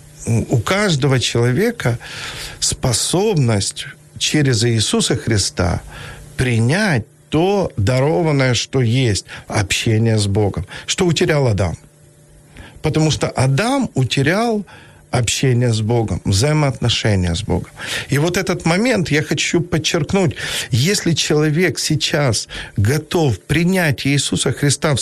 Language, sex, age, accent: Ukrainian, male, 50-69, native